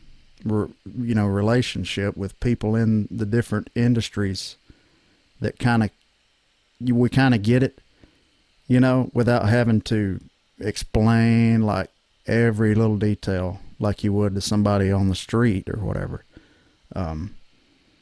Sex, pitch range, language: male, 100-120 Hz, English